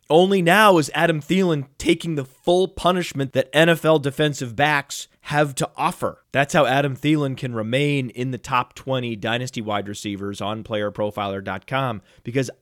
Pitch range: 130-170 Hz